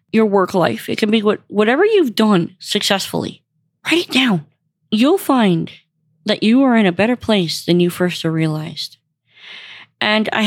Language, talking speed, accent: English, 165 wpm, American